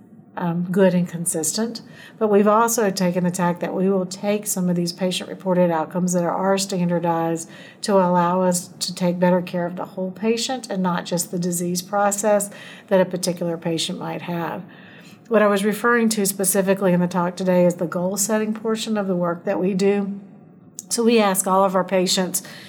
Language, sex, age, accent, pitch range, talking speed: English, female, 50-69, American, 180-200 Hz, 200 wpm